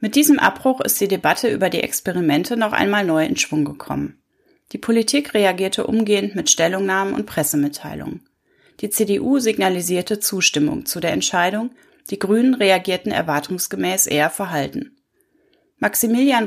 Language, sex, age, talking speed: German, female, 30-49, 135 wpm